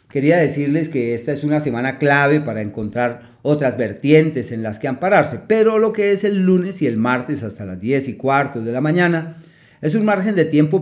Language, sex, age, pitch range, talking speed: Spanish, male, 40-59, 125-155 Hz, 210 wpm